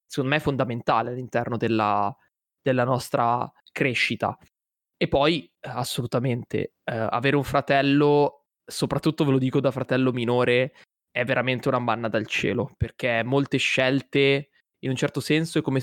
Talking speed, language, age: 145 wpm, Italian, 20-39